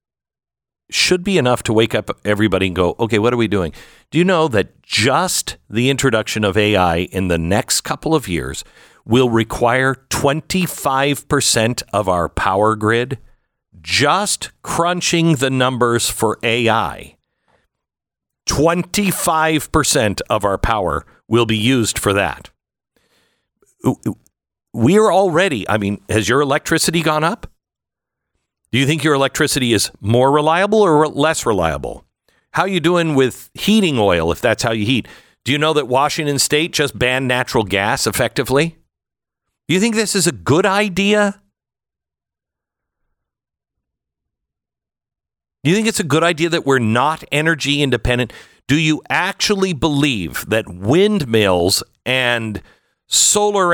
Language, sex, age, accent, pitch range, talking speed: English, male, 50-69, American, 110-160 Hz, 135 wpm